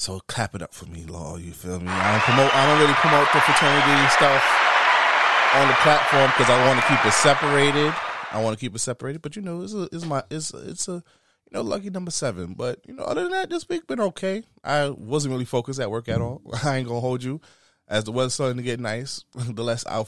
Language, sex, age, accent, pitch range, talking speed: English, male, 20-39, American, 100-145 Hz, 255 wpm